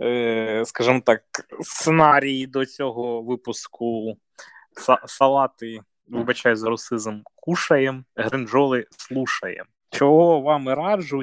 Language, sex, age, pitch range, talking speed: Ukrainian, male, 20-39, 105-135 Hz, 85 wpm